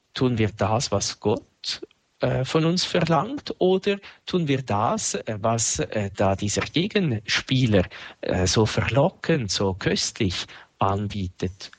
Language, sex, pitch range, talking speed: German, male, 105-140 Hz, 120 wpm